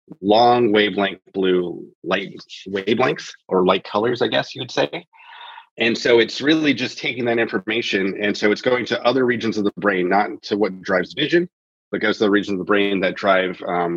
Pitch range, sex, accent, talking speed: 95-120 Hz, male, American, 200 wpm